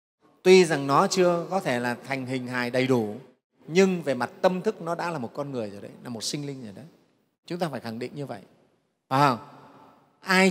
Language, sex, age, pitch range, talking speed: Vietnamese, male, 30-49, 130-185 Hz, 235 wpm